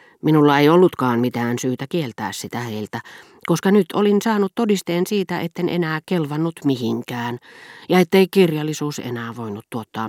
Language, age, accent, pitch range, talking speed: Finnish, 40-59, native, 120-180 Hz, 145 wpm